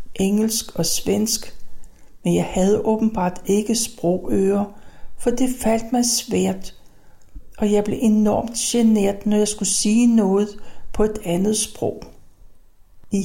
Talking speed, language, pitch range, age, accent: 130 wpm, Danish, 180-225 Hz, 60-79, native